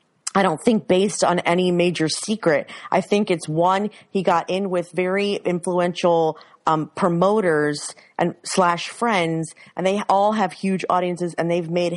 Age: 30-49